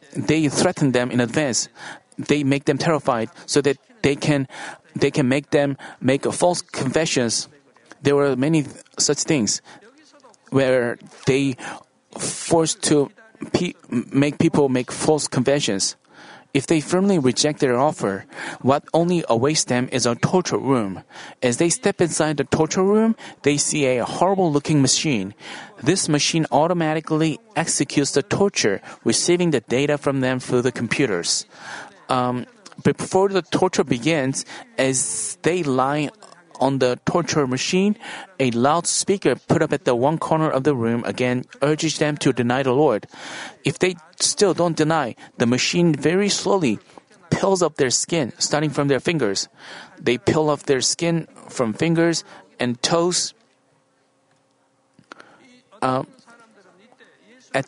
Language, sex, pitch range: Korean, male, 135-170 Hz